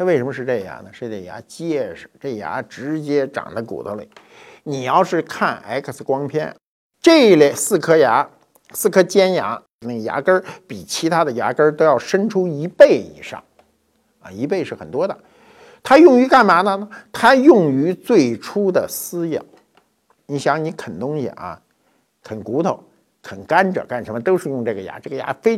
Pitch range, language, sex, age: 135-220 Hz, Chinese, male, 50-69